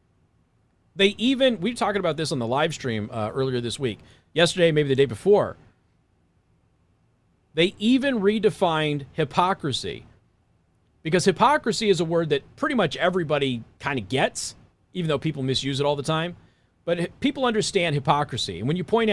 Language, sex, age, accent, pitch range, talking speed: English, male, 40-59, American, 130-185 Hz, 165 wpm